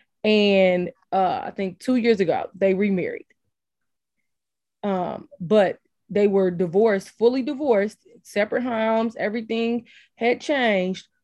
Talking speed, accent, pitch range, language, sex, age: 110 wpm, American, 185-220 Hz, English, female, 20-39